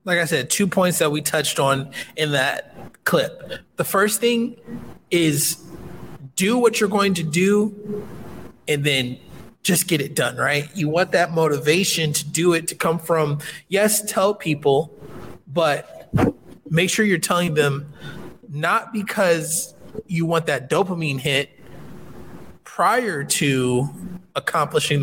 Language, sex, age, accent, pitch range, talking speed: English, male, 20-39, American, 145-185 Hz, 140 wpm